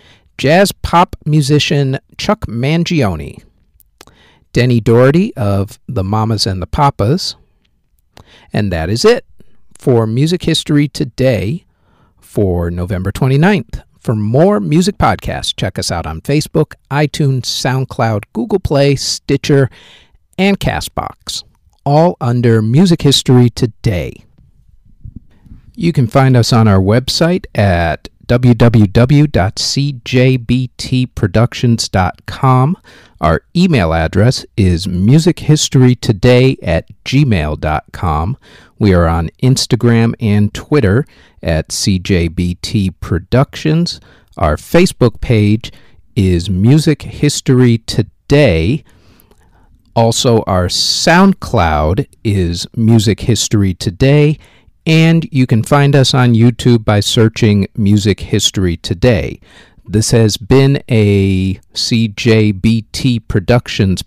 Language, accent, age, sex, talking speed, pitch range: English, American, 50-69, male, 95 wpm, 100-140 Hz